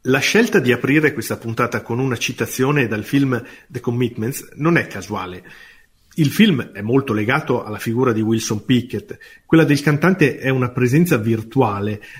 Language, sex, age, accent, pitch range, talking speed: Italian, male, 40-59, native, 110-150 Hz, 160 wpm